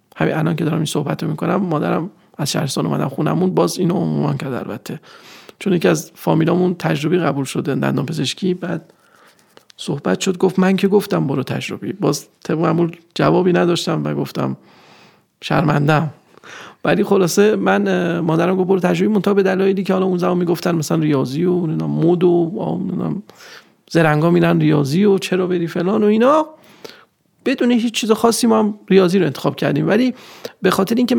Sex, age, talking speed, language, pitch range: male, 30-49, 165 wpm, Persian, 165-200 Hz